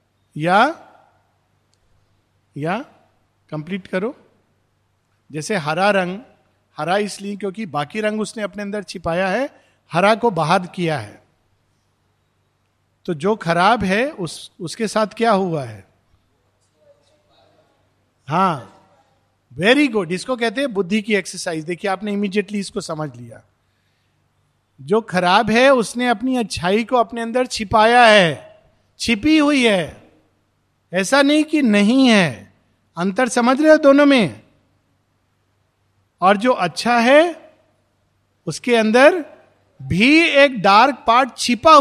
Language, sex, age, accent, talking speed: Hindi, male, 50-69, native, 120 wpm